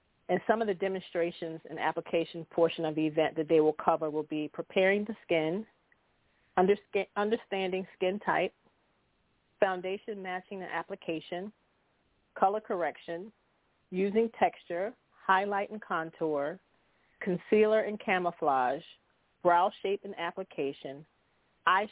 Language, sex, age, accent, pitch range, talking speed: English, female, 40-59, American, 160-195 Hz, 115 wpm